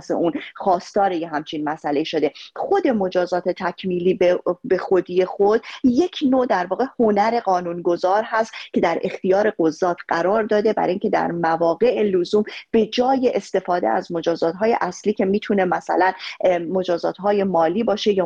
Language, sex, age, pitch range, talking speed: Persian, female, 30-49, 175-215 Hz, 150 wpm